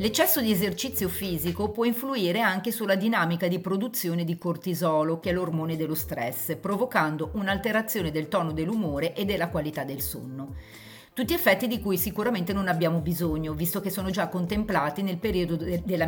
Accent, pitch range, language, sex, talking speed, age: native, 165-220 Hz, Italian, female, 165 wpm, 40-59